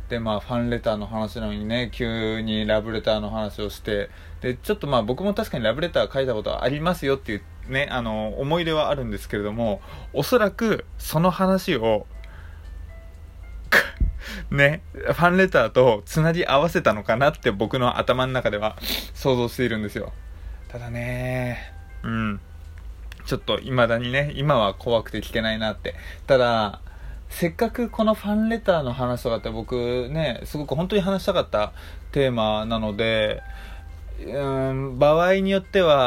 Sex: male